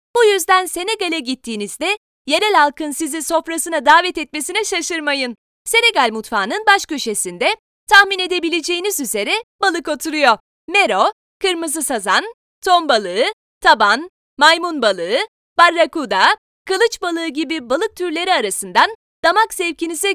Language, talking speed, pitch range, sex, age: Turkish, 110 wpm, 310-395 Hz, female, 30-49